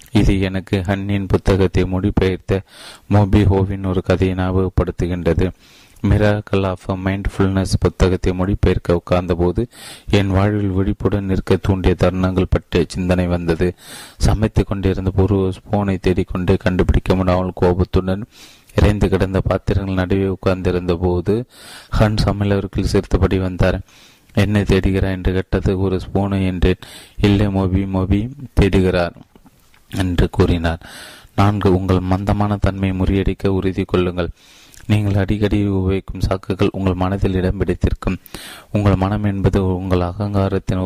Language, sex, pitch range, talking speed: Tamil, male, 90-100 Hz, 105 wpm